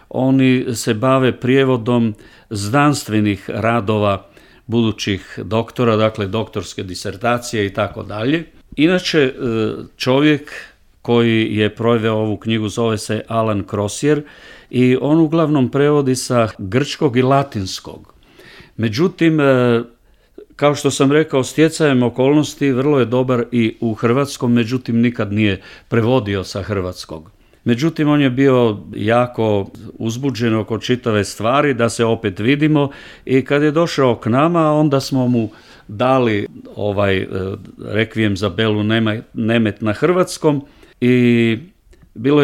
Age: 50-69